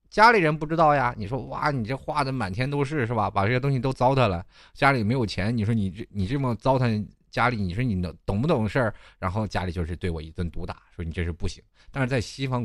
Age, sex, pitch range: 20-39, male, 90-125 Hz